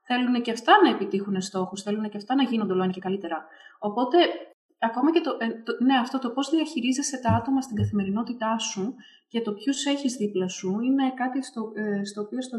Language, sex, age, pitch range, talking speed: Greek, female, 20-39, 195-250 Hz, 200 wpm